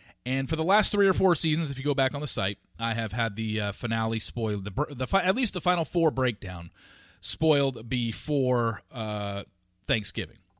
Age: 30-49